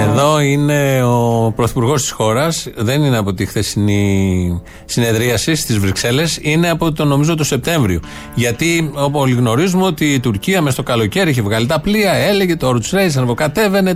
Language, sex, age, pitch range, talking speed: Greek, male, 30-49, 120-170 Hz, 160 wpm